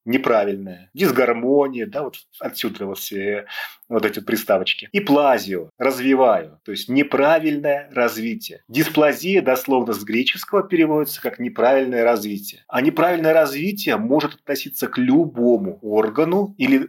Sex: male